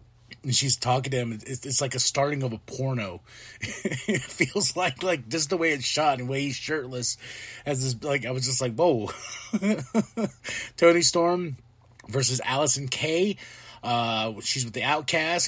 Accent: American